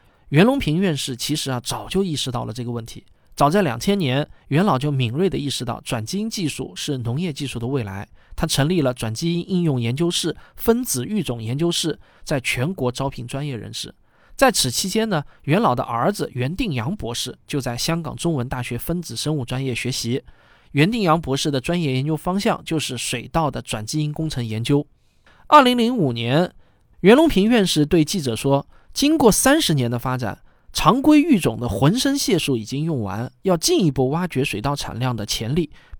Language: Chinese